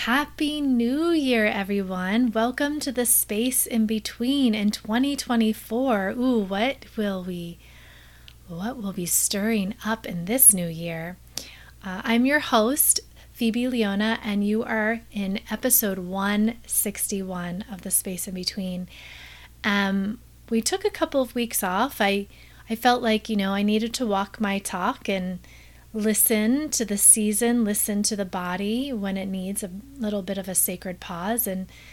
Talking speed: 155 wpm